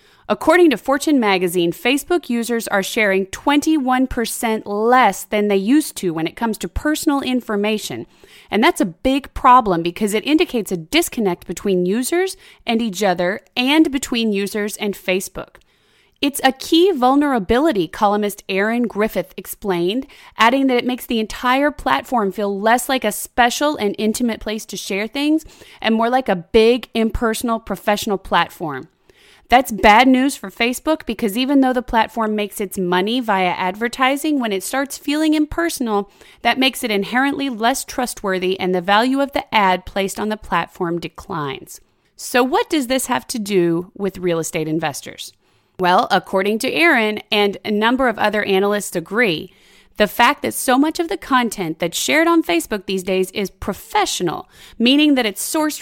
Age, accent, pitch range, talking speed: 30-49, American, 195-265 Hz, 165 wpm